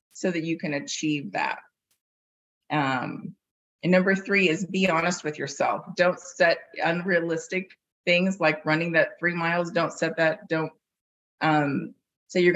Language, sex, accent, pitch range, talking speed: English, female, American, 150-175 Hz, 150 wpm